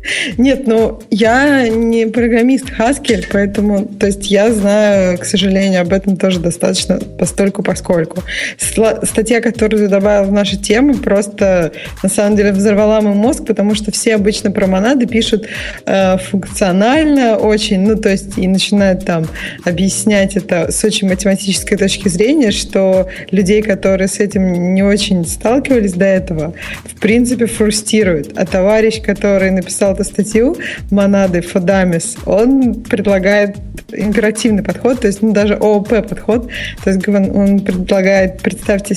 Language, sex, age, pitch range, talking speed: Russian, female, 20-39, 195-225 Hz, 140 wpm